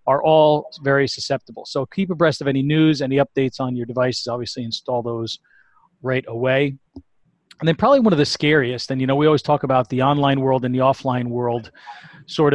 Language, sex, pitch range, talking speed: English, male, 125-150 Hz, 200 wpm